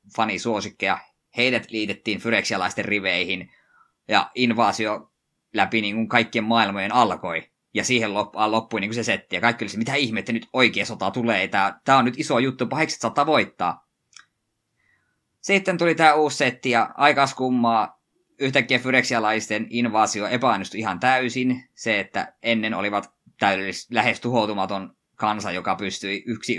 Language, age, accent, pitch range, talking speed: Finnish, 20-39, native, 105-125 Hz, 140 wpm